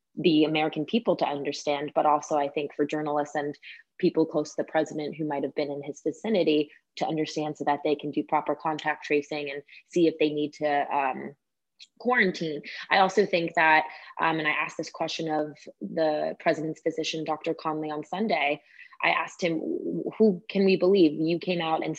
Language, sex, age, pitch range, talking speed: English, female, 20-39, 150-175 Hz, 190 wpm